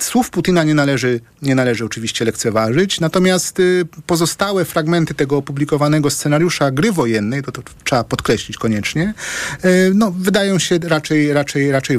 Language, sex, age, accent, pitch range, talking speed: Polish, male, 40-59, native, 135-165 Hz, 145 wpm